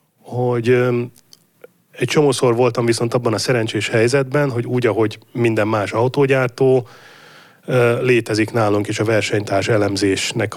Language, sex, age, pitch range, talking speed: English, male, 30-49, 110-135 Hz, 120 wpm